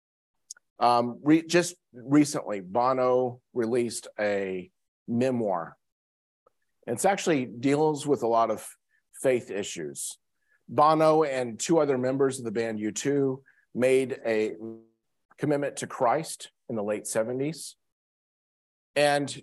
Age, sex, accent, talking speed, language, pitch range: 40-59, male, American, 115 wpm, English, 110-150 Hz